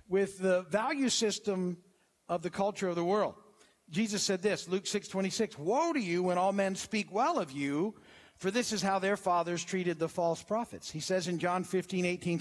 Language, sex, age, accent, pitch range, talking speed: English, male, 50-69, American, 175-230 Hz, 195 wpm